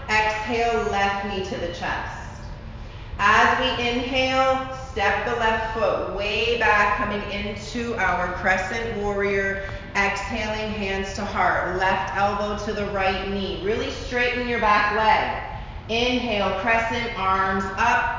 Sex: female